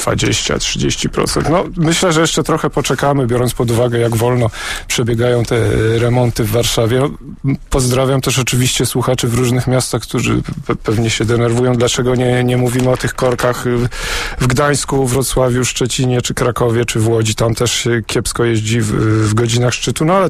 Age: 40-59